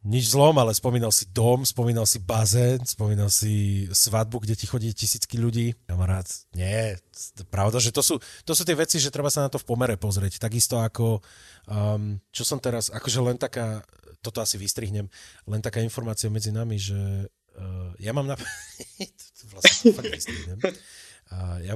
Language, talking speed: Slovak, 175 wpm